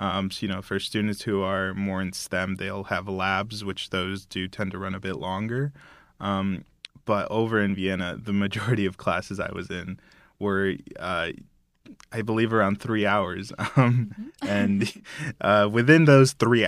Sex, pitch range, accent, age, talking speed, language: male, 95-110 Hz, American, 20-39, 175 wpm, English